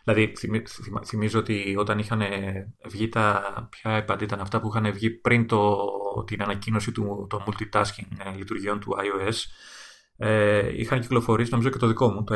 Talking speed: 160 wpm